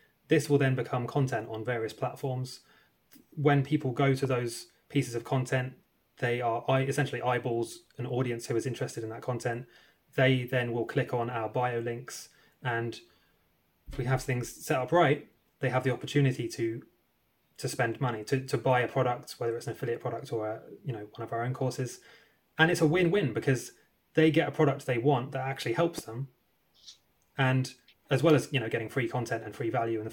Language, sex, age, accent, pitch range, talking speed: English, male, 20-39, British, 115-140 Hz, 200 wpm